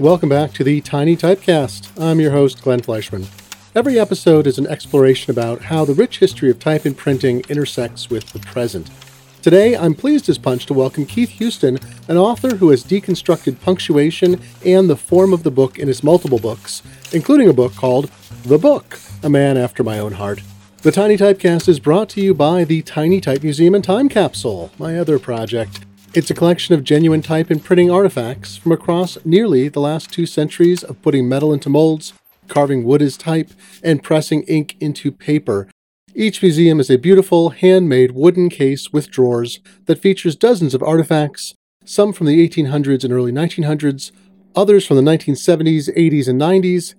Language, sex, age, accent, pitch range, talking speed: English, male, 40-59, American, 135-180 Hz, 185 wpm